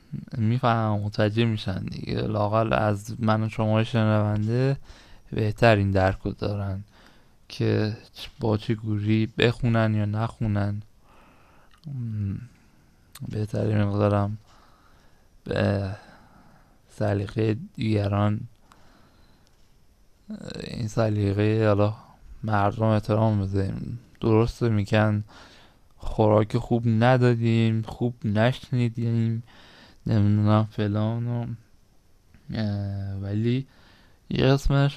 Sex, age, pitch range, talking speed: male, 20-39, 100-115 Hz, 70 wpm